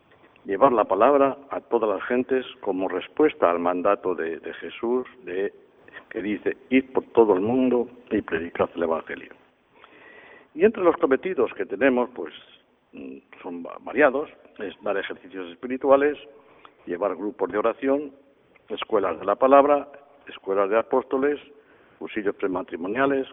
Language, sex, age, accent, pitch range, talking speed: Spanish, male, 60-79, Spanish, 110-150 Hz, 135 wpm